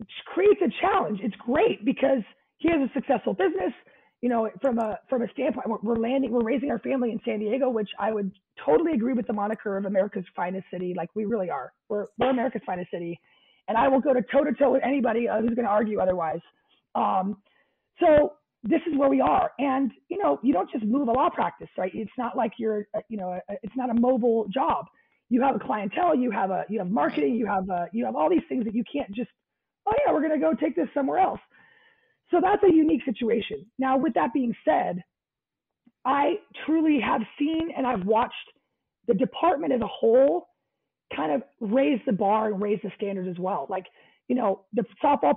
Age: 30-49